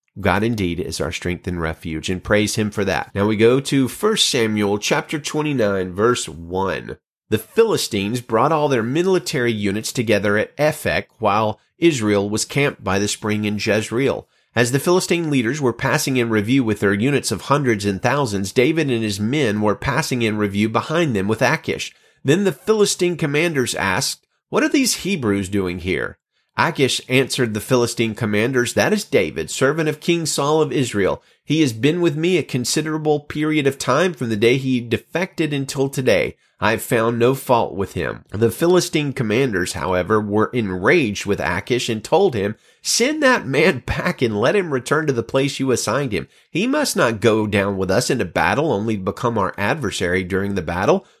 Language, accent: English, American